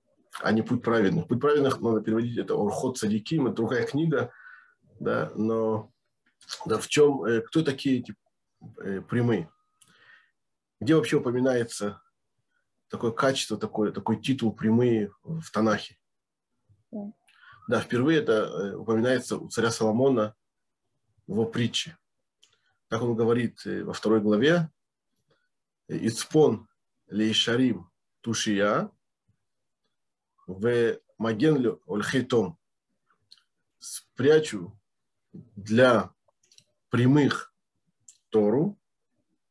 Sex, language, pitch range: male, Russian, 110-150 Hz